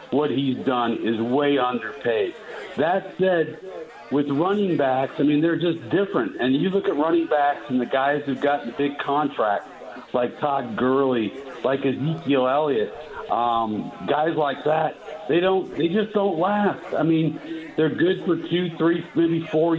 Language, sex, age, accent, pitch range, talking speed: English, male, 60-79, American, 130-165 Hz, 165 wpm